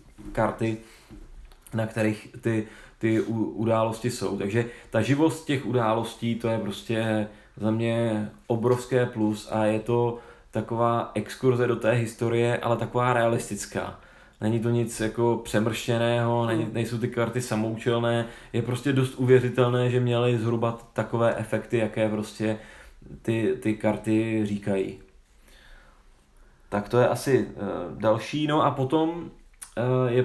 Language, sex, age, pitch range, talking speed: Czech, male, 20-39, 110-125 Hz, 125 wpm